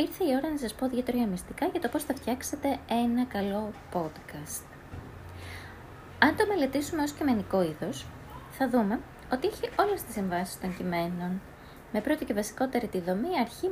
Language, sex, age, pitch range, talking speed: Greek, female, 20-39, 175-270 Hz, 165 wpm